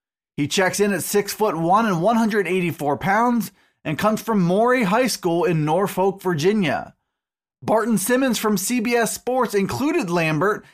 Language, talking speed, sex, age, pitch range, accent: English, 140 wpm, male, 20-39, 185-230 Hz, American